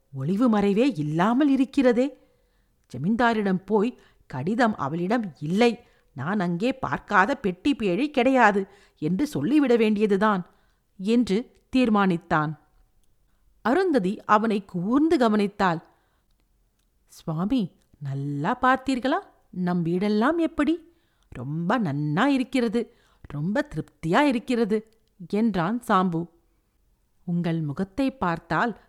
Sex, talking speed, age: female, 80 wpm, 50-69